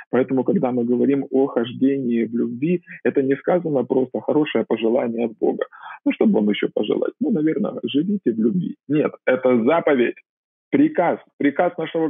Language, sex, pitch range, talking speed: Russian, male, 120-170 Hz, 165 wpm